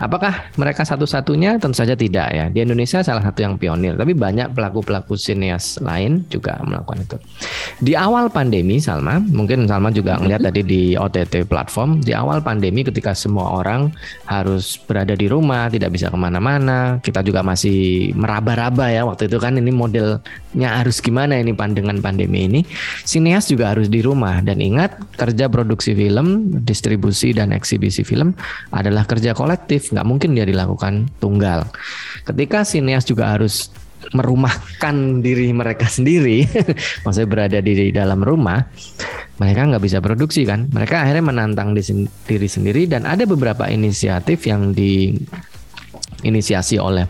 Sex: male